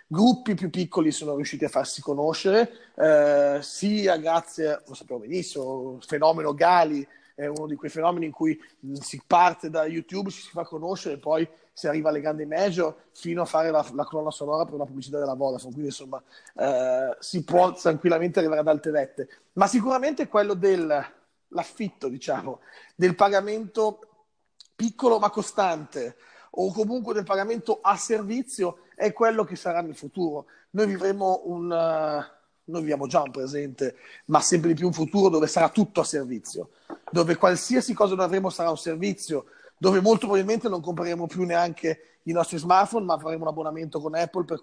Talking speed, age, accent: 170 wpm, 30-49, native